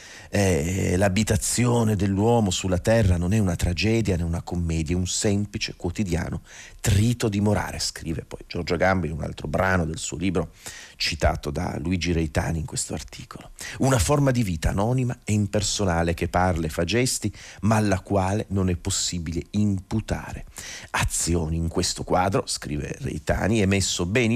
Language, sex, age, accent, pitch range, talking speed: Italian, male, 40-59, native, 85-105 Hz, 160 wpm